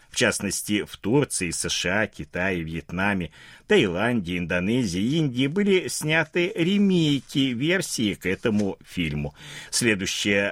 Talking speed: 105 wpm